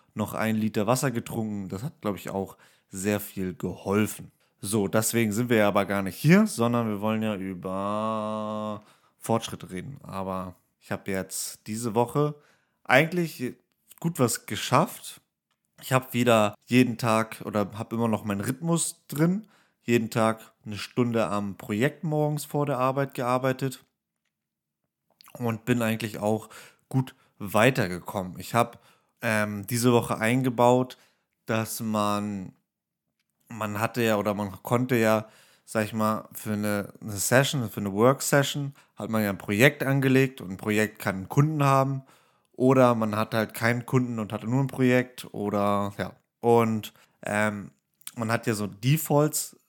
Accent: German